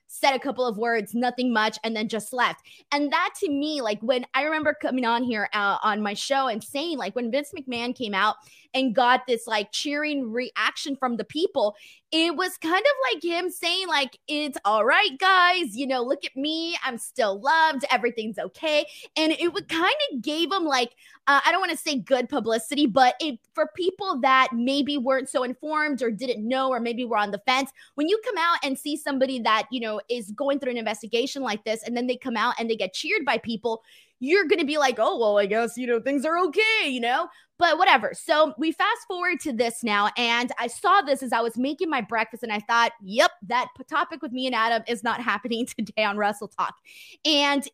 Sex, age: female, 20-39